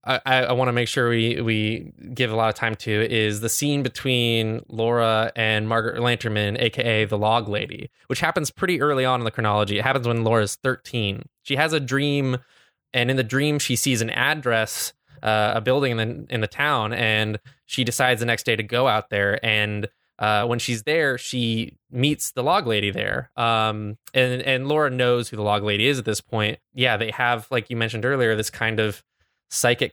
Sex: male